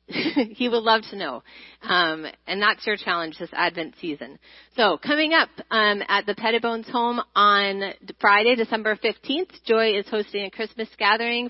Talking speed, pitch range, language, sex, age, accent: 160 wpm, 200-240 Hz, English, female, 30-49, American